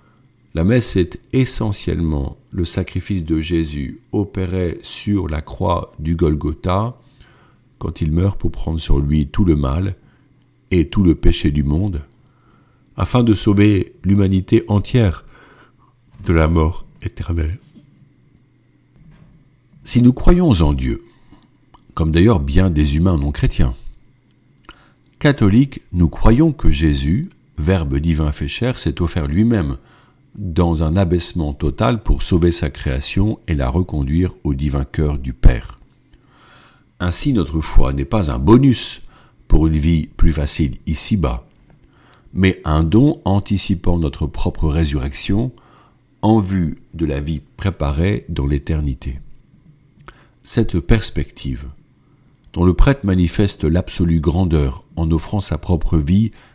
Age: 50-69